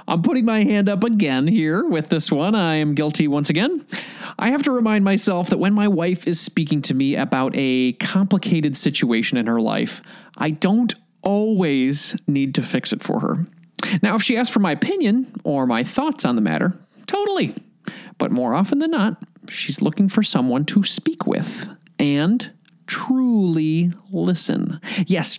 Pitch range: 170-220 Hz